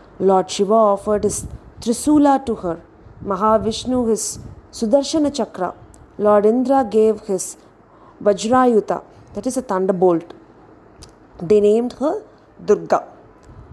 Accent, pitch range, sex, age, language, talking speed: native, 195-250 Hz, female, 30-49, Tamil, 105 wpm